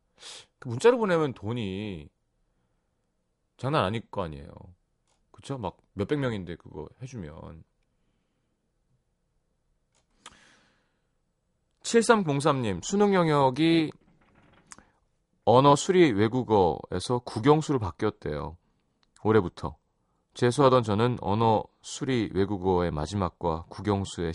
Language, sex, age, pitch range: Korean, male, 30-49, 90-145 Hz